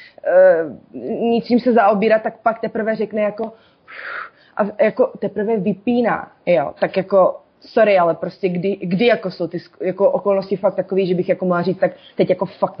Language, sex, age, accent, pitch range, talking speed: Czech, female, 20-39, native, 200-245 Hz, 180 wpm